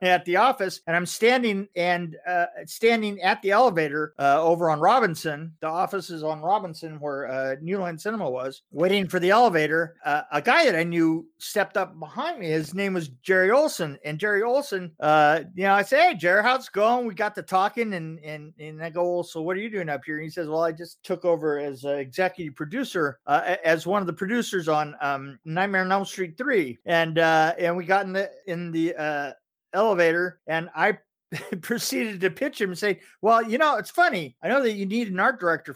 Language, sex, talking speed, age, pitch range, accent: English, male, 220 wpm, 50-69, 165-210 Hz, American